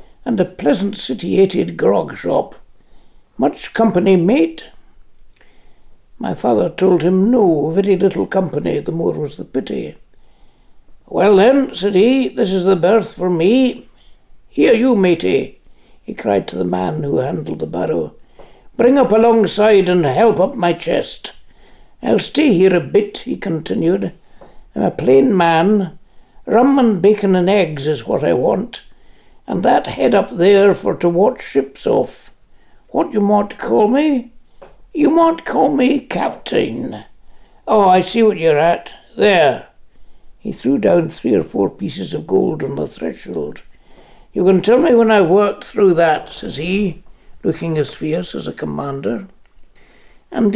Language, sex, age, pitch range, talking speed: English, male, 60-79, 175-225 Hz, 150 wpm